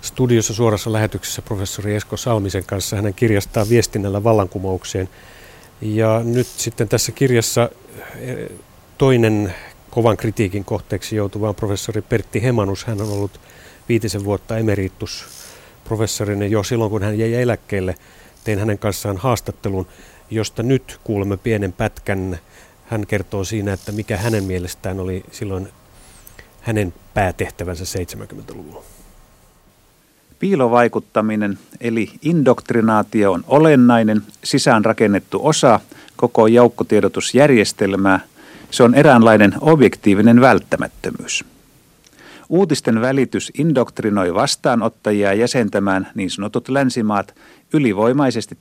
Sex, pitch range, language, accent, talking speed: male, 100-120 Hz, Finnish, native, 100 wpm